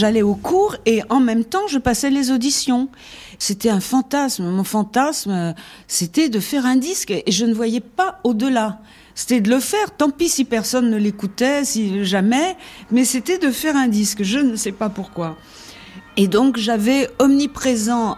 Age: 50-69